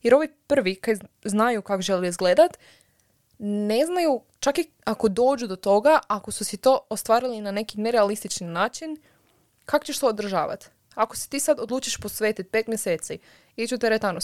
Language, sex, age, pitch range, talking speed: Croatian, female, 20-39, 200-255 Hz, 170 wpm